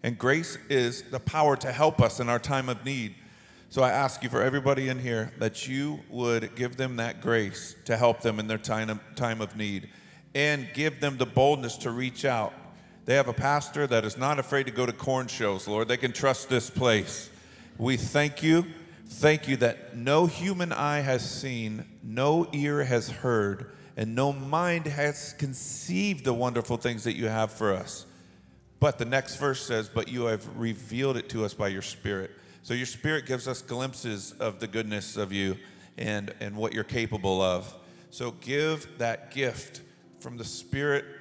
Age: 50-69